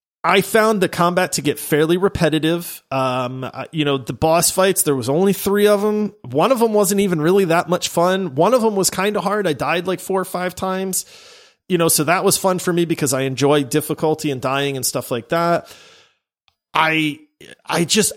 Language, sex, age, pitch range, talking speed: English, male, 30-49, 145-210 Hz, 210 wpm